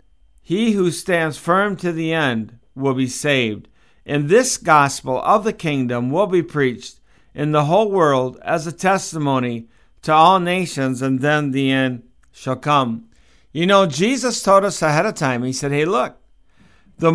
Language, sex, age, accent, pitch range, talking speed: English, male, 50-69, American, 130-180 Hz, 170 wpm